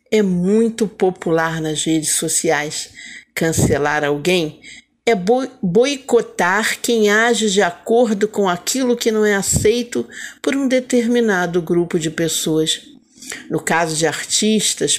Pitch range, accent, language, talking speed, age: 175-240 Hz, Brazilian, Portuguese, 120 wpm, 50-69